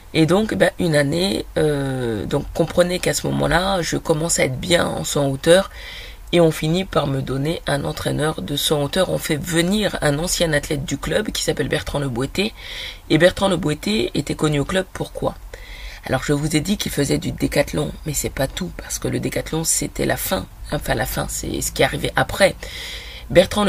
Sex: female